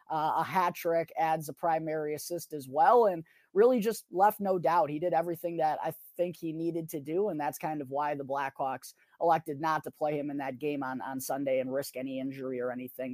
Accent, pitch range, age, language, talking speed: American, 150-195 Hz, 20-39, English, 230 wpm